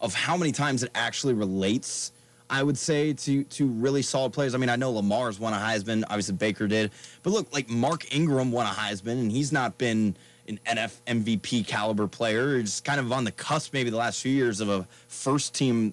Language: English